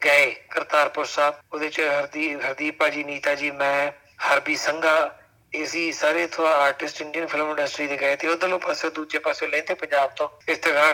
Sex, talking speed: male, 180 wpm